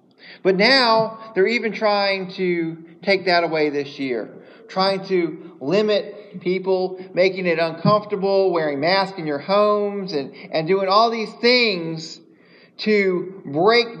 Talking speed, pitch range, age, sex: 135 wpm, 155-200 Hz, 40-59, male